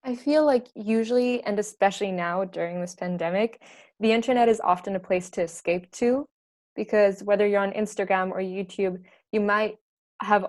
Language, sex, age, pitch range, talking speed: English, female, 20-39, 185-210 Hz, 165 wpm